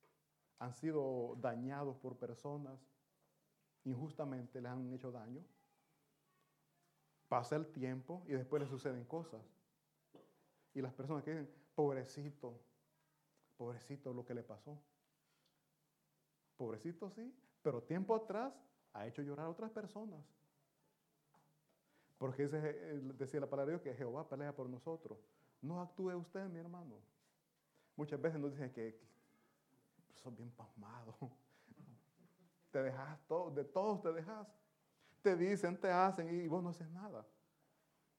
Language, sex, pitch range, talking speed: Italian, male, 135-175 Hz, 125 wpm